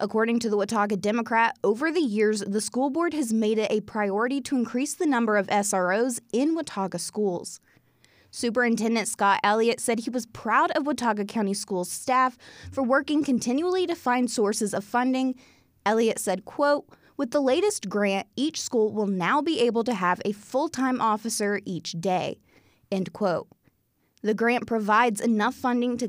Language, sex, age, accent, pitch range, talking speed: English, female, 20-39, American, 205-260 Hz, 170 wpm